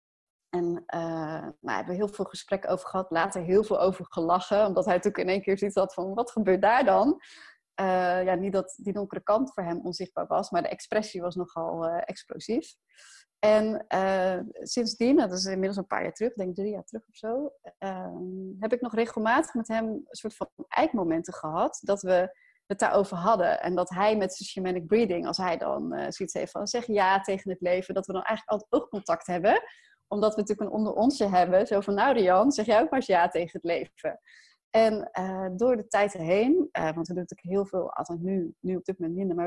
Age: 30-49